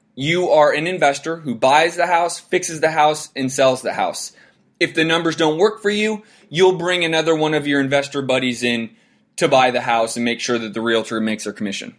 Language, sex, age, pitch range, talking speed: English, male, 20-39, 130-170 Hz, 220 wpm